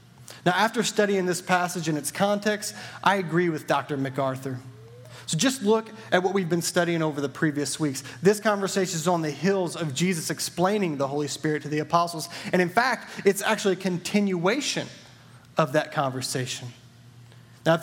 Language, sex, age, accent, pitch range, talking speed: English, male, 30-49, American, 130-190 Hz, 175 wpm